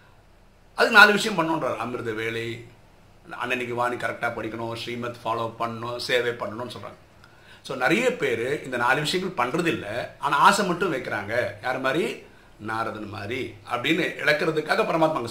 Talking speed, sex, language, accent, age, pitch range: 135 wpm, male, Tamil, native, 50-69, 115-165 Hz